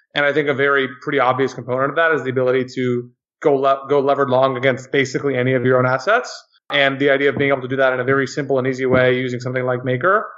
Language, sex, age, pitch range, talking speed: English, male, 30-49, 125-140 Hz, 265 wpm